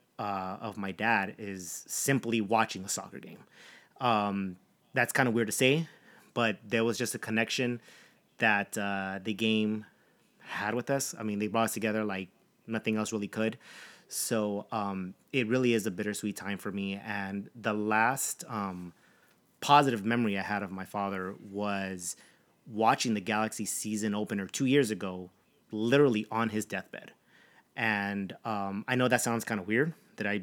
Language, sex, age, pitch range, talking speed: English, male, 30-49, 100-120 Hz, 170 wpm